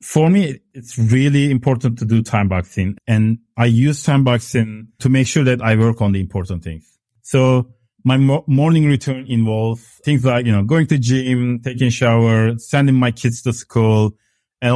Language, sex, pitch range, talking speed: English, male, 115-135 Hz, 180 wpm